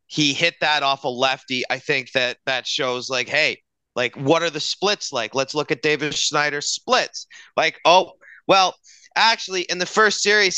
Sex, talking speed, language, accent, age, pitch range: male, 185 wpm, English, American, 30-49, 135-175 Hz